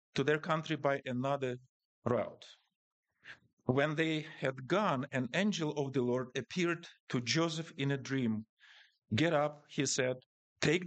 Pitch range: 125-155 Hz